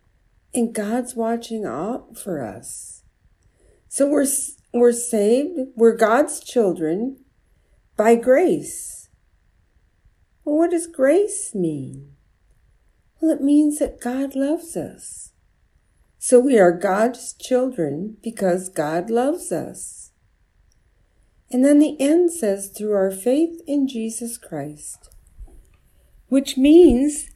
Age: 50-69